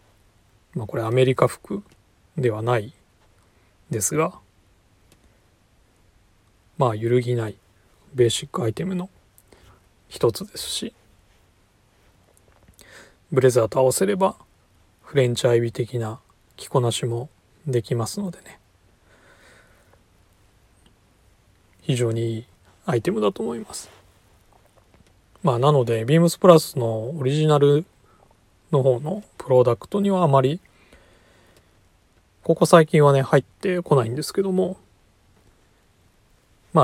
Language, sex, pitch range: Japanese, male, 100-135 Hz